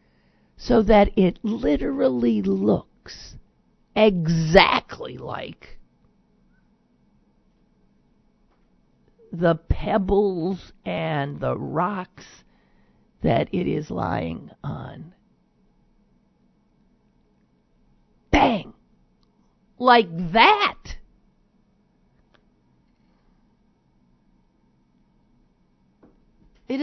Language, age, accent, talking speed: English, 50-69, American, 45 wpm